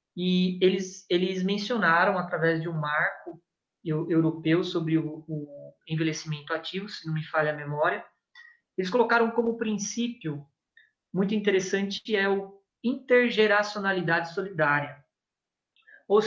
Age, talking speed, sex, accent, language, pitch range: 20-39, 120 wpm, male, Brazilian, Portuguese, 160-205 Hz